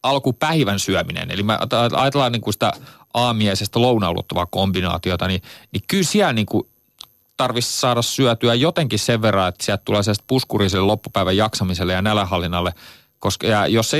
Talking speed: 140 wpm